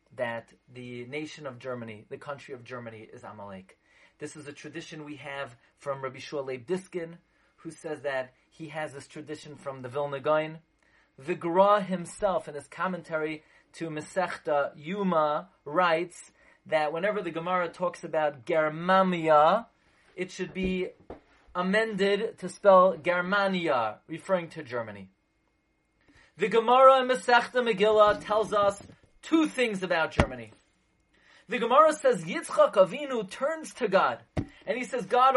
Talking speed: 140 wpm